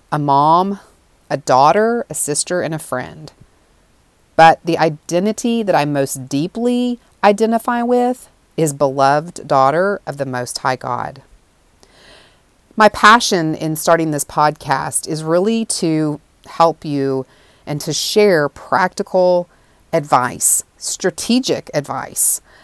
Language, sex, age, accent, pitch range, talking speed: English, female, 40-59, American, 135-180 Hz, 115 wpm